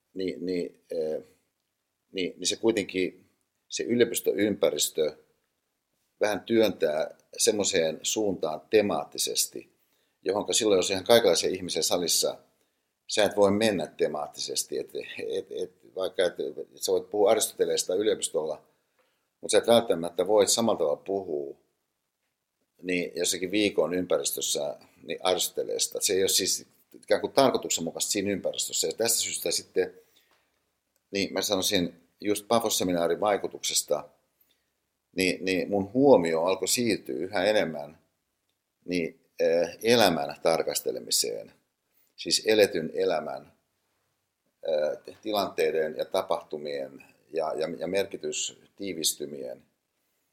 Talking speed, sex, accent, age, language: 100 wpm, male, native, 60-79, Finnish